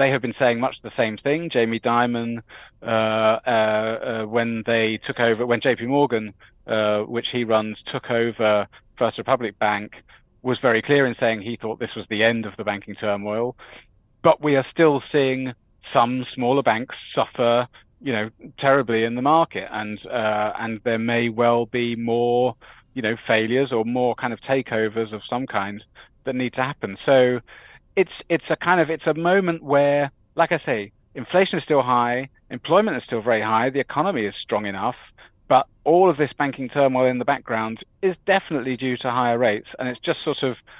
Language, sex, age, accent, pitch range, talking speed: English, male, 30-49, British, 110-140 Hz, 190 wpm